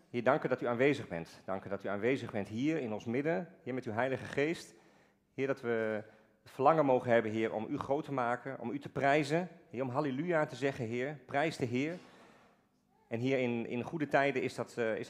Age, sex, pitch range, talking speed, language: 40-59, male, 105-130 Hz, 225 wpm, Dutch